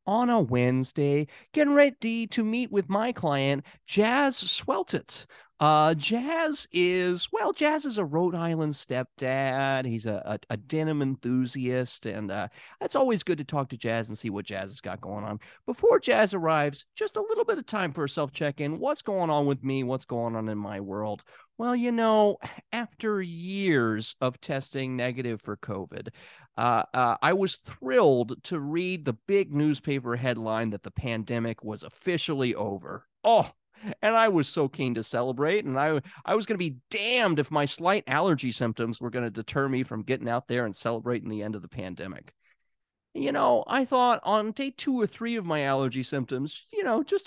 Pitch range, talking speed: 120-200 Hz, 185 wpm